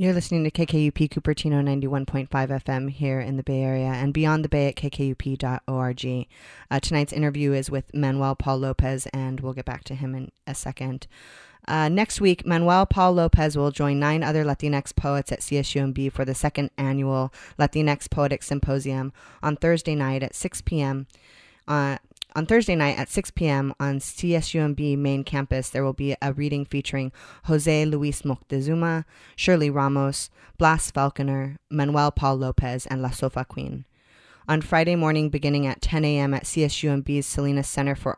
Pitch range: 135-150 Hz